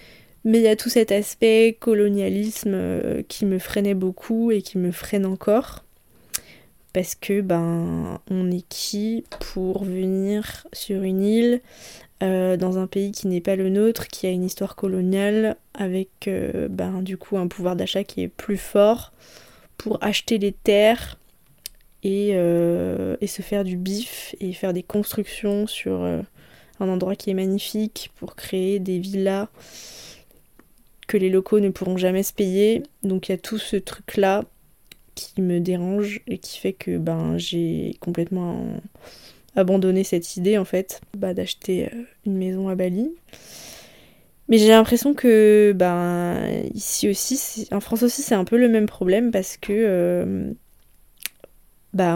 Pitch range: 185-215 Hz